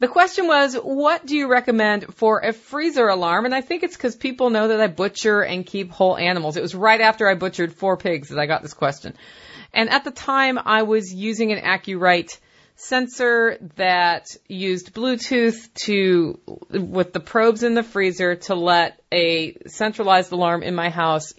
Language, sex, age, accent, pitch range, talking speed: English, female, 40-59, American, 175-225 Hz, 185 wpm